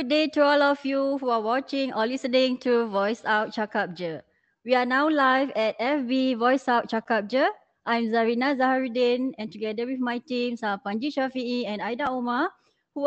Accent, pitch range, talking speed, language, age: Malaysian, 220-280 Hz, 175 wpm, English, 20-39